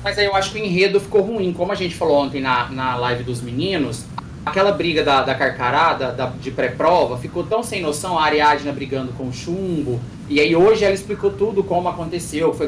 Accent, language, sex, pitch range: Brazilian, Portuguese, male, 150-195 Hz